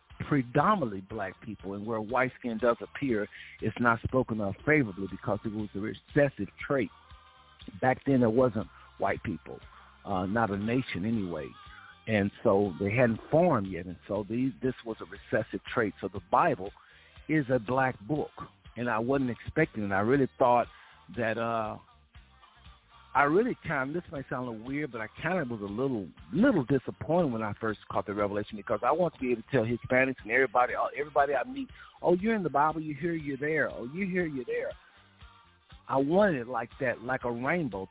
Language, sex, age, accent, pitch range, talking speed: English, male, 60-79, American, 105-135 Hz, 195 wpm